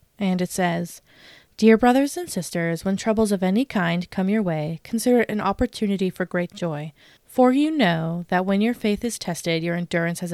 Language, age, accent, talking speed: English, 20-39, American, 195 wpm